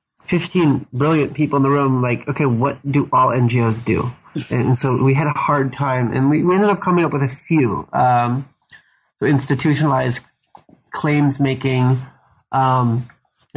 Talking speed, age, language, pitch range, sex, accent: 165 wpm, 30-49, English, 125-145 Hz, male, American